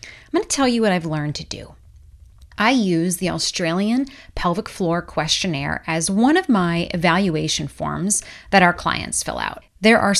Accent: American